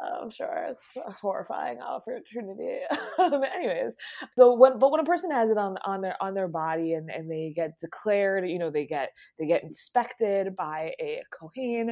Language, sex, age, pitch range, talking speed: English, female, 20-39, 170-240 Hz, 180 wpm